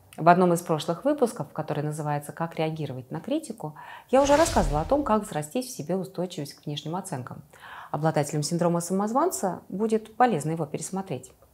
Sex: female